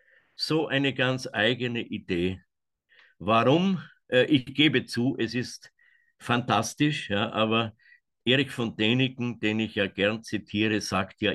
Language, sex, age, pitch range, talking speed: German, male, 50-69, 105-125 Hz, 125 wpm